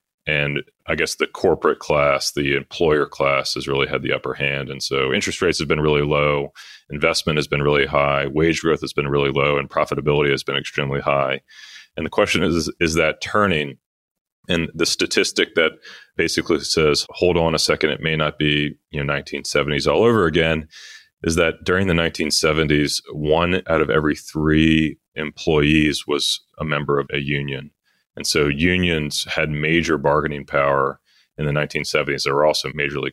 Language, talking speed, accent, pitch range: English, 180 wpm, American, 70-80 Hz